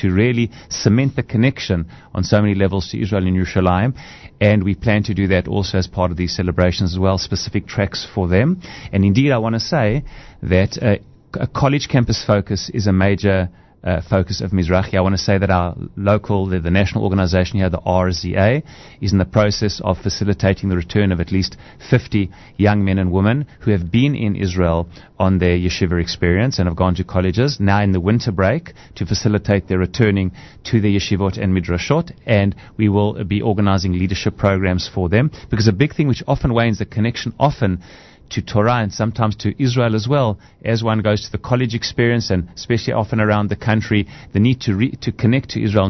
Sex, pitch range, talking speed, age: male, 95-115 Hz, 205 wpm, 30-49